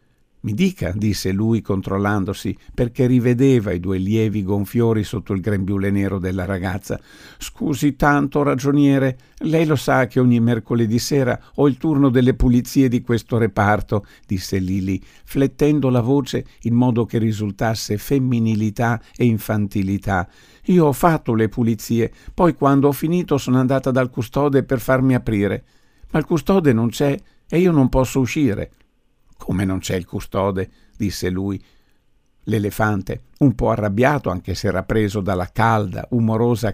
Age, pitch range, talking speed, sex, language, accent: 50-69, 105-140 Hz, 150 wpm, male, Italian, native